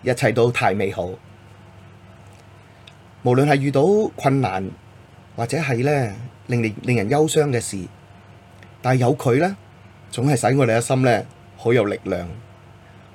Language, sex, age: Chinese, male, 30-49